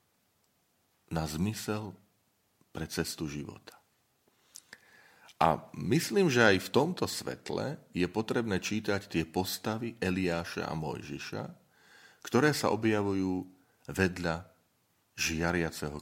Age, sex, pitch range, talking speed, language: 40-59, male, 80-100 Hz, 95 wpm, Slovak